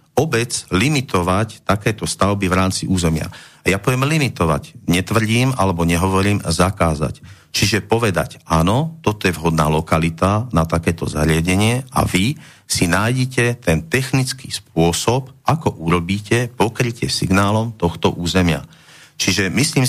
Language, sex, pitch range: Slovak, male, 85-120 Hz